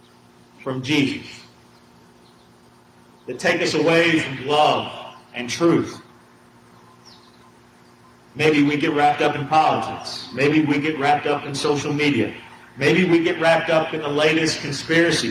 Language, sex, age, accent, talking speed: English, male, 40-59, American, 135 wpm